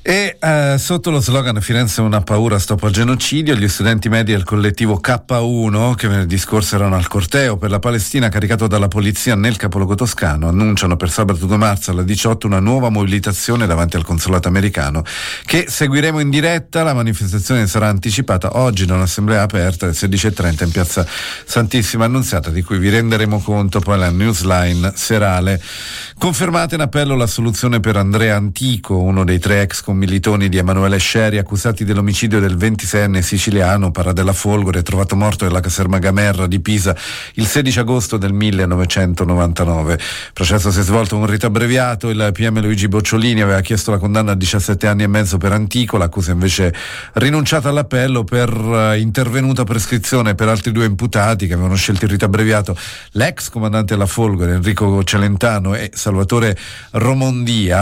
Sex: male